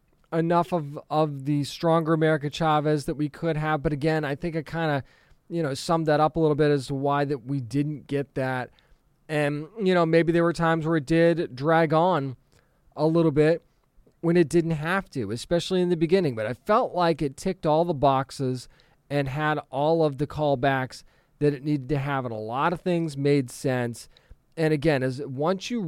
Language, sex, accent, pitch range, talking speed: English, male, American, 135-165 Hz, 210 wpm